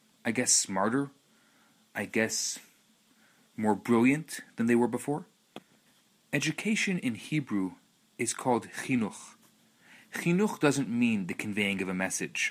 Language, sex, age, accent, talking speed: English, male, 30-49, Canadian, 120 wpm